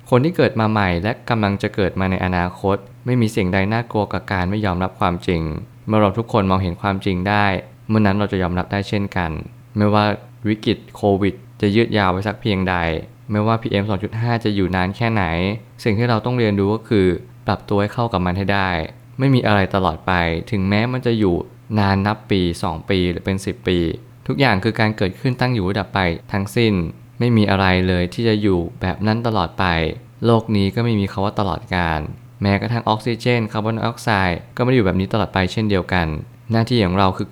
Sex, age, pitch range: male, 20-39, 95-115 Hz